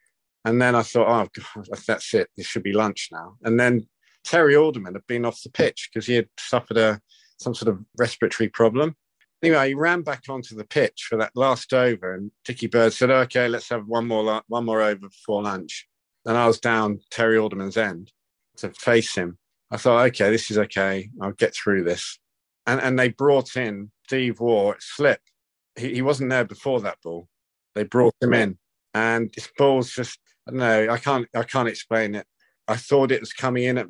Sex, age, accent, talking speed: male, 50-69, British, 200 wpm